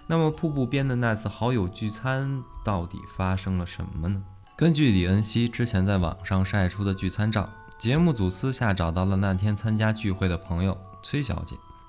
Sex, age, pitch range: male, 20-39, 95-125 Hz